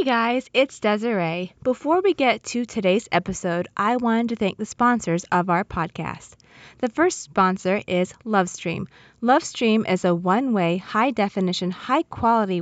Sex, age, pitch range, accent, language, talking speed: female, 20-39, 180-235 Hz, American, English, 150 wpm